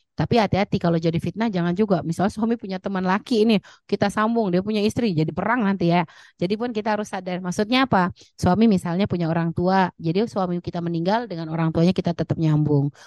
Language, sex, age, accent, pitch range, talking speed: Indonesian, female, 30-49, native, 175-215 Hz, 200 wpm